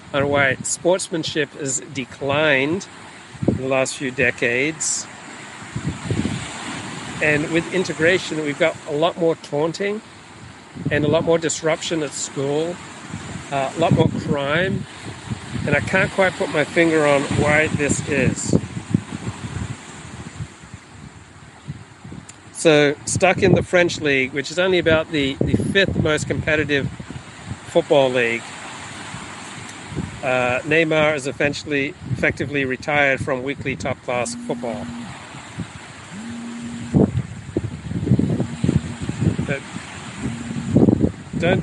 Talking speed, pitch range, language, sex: 100 wpm, 135-165 Hz, English, male